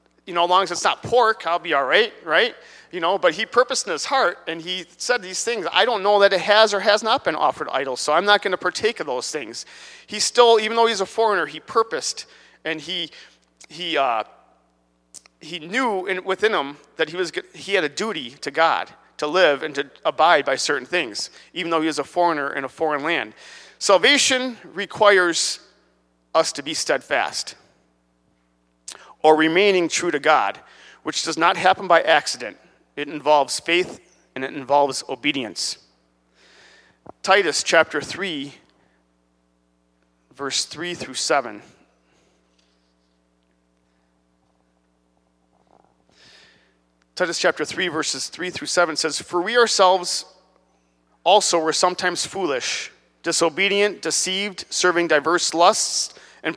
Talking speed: 150 wpm